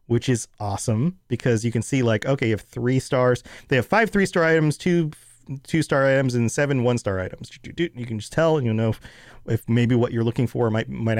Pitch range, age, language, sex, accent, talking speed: 120-175 Hz, 30-49, English, male, American, 210 wpm